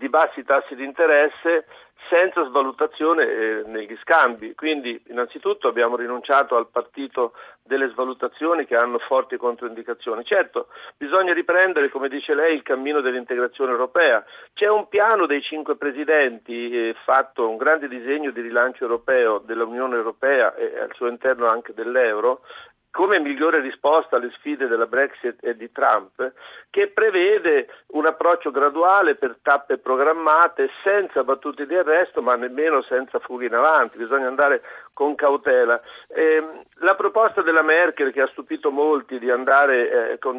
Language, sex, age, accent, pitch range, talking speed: Italian, male, 50-69, native, 130-210 Hz, 145 wpm